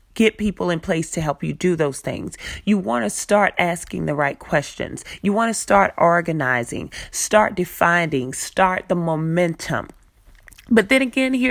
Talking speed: 165 wpm